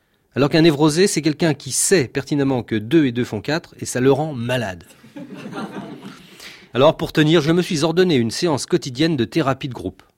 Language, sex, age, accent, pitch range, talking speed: French, male, 40-59, French, 120-165 Hz, 195 wpm